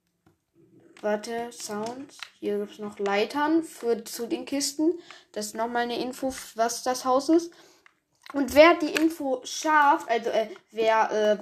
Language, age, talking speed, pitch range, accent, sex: German, 10-29, 150 wpm, 215-275 Hz, German, female